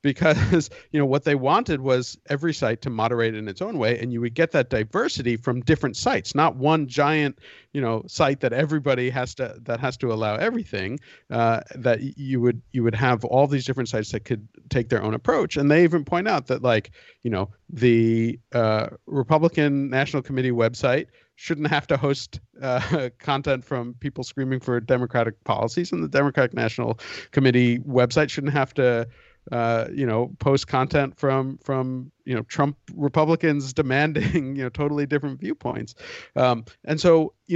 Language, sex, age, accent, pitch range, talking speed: English, male, 50-69, American, 120-150 Hz, 180 wpm